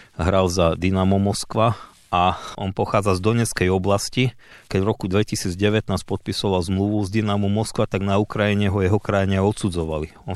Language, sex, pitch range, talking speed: Slovak, male, 95-105 Hz, 160 wpm